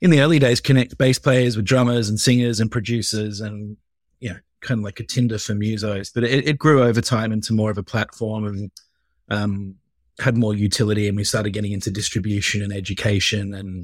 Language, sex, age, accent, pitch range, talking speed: English, male, 30-49, Australian, 100-120 Hz, 215 wpm